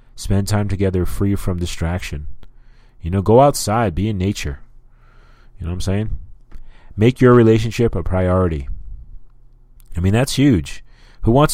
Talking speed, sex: 150 wpm, male